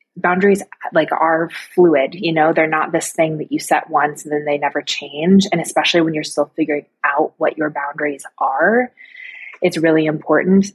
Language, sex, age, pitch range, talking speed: English, female, 20-39, 150-175 Hz, 185 wpm